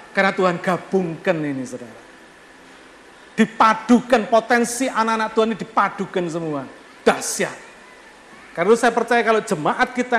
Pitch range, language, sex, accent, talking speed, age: 155-200 Hz, Indonesian, male, native, 120 wpm, 50-69